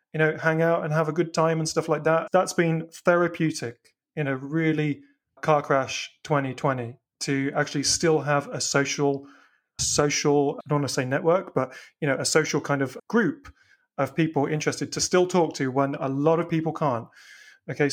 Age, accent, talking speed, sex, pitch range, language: 30-49, British, 190 wpm, male, 140-160 Hz, English